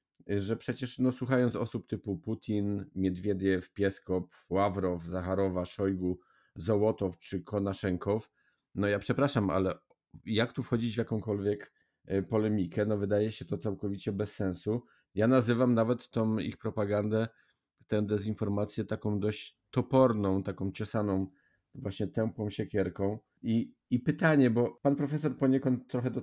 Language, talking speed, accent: Polish, 130 wpm, native